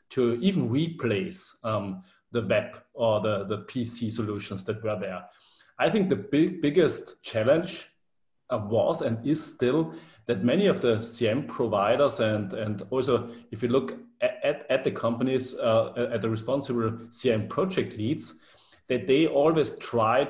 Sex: male